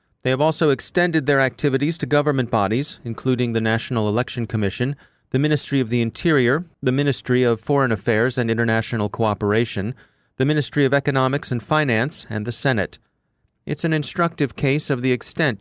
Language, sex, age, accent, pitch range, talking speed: English, male, 30-49, American, 115-145 Hz, 165 wpm